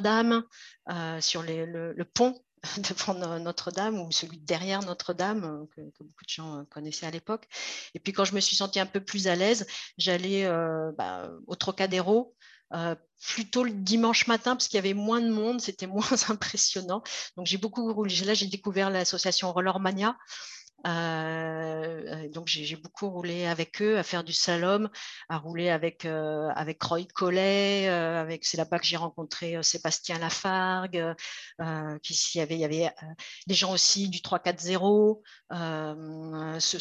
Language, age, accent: French, 50-69, French